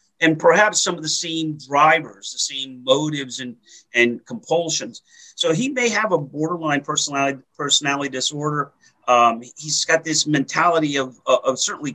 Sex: male